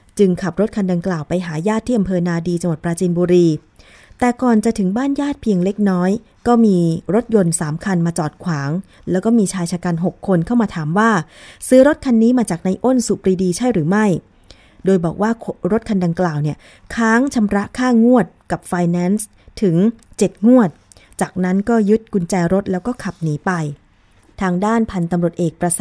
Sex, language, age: female, Thai, 20-39